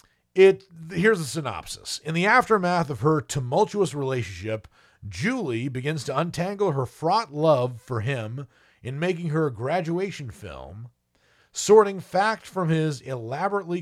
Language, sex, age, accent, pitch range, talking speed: English, male, 40-59, American, 110-155 Hz, 135 wpm